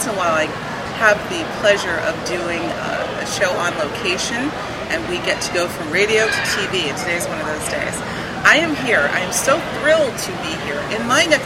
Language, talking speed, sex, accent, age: English, 220 wpm, female, American, 40-59